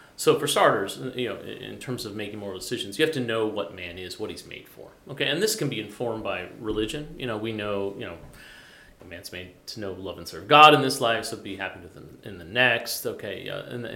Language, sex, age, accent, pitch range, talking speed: English, male, 30-49, American, 100-125 Hz, 250 wpm